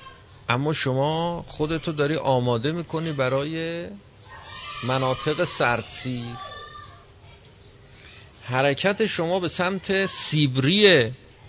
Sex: male